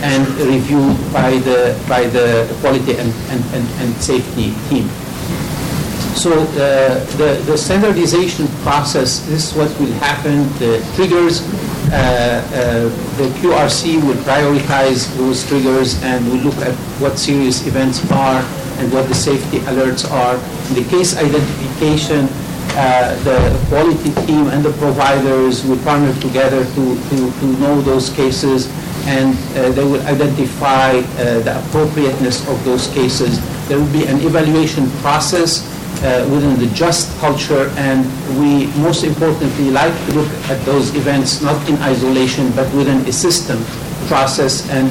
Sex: male